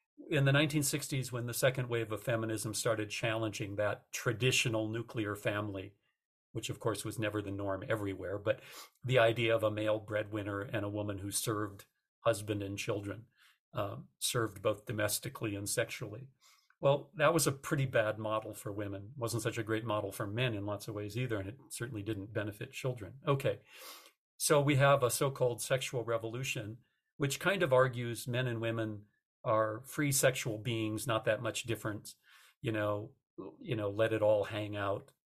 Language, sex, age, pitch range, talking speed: English, male, 50-69, 105-130 Hz, 175 wpm